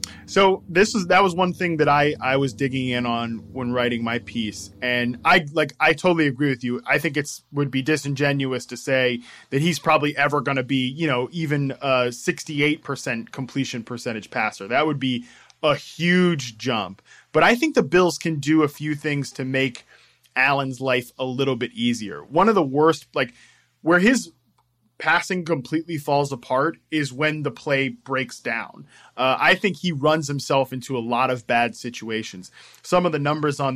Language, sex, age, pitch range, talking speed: English, male, 20-39, 125-155 Hz, 190 wpm